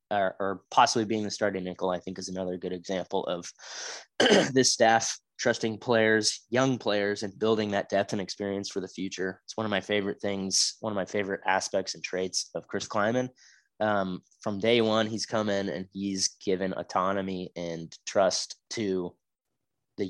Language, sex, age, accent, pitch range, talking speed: English, male, 20-39, American, 100-115 Hz, 175 wpm